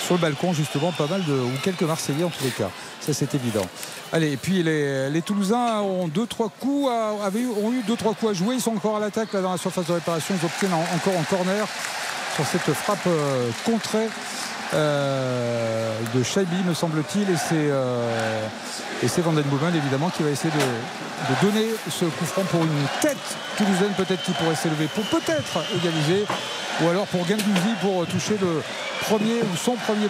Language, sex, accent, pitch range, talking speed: French, male, French, 160-210 Hz, 205 wpm